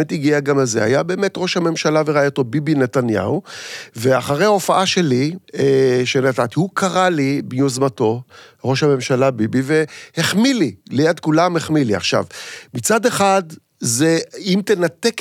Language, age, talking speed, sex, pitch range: Hebrew, 50-69, 135 wpm, male, 140-190 Hz